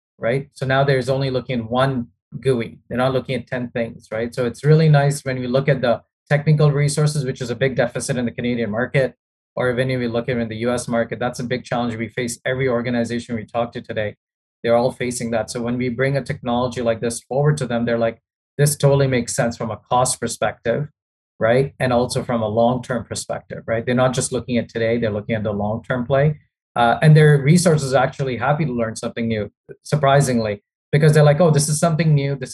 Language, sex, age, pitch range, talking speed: English, male, 30-49, 115-140 Hz, 230 wpm